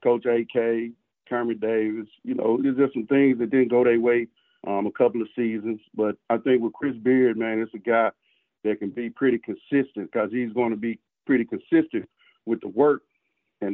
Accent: American